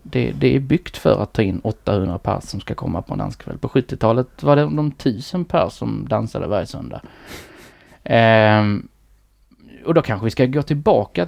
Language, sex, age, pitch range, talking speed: Swedish, male, 20-39, 105-135 Hz, 190 wpm